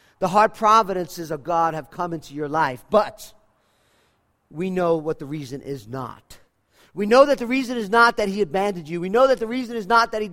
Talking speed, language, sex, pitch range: 220 wpm, English, male, 135-210 Hz